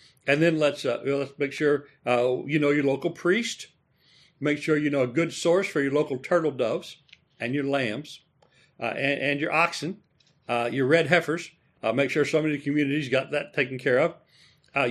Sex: male